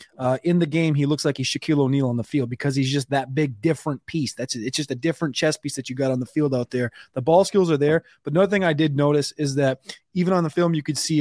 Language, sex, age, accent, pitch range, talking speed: English, male, 30-49, American, 135-165 Hz, 295 wpm